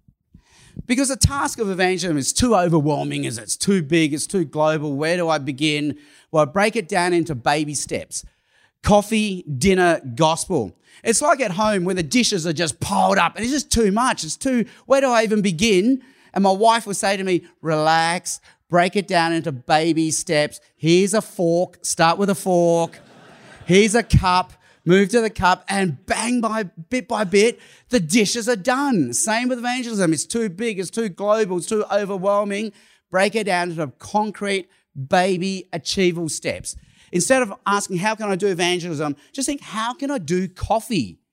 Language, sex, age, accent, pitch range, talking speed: English, male, 30-49, Australian, 165-220 Hz, 180 wpm